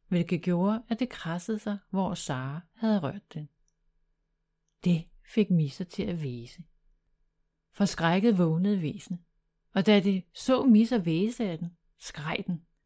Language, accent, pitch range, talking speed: Danish, native, 160-215 Hz, 140 wpm